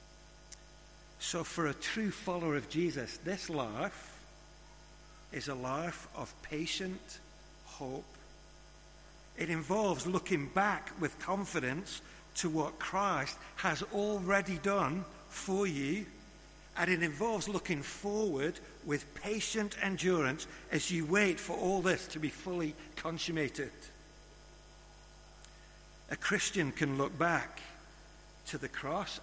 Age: 60-79